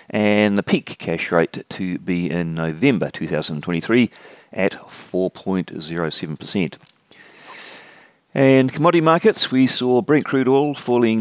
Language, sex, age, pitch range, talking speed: English, male, 40-59, 80-115 Hz, 110 wpm